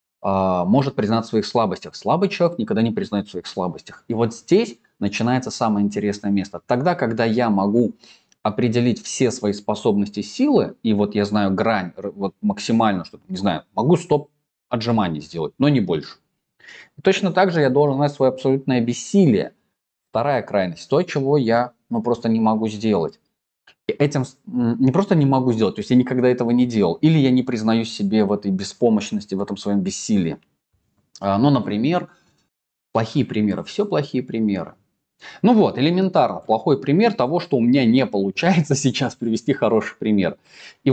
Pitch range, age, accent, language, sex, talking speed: 105-150 Hz, 20-39, native, Russian, male, 165 wpm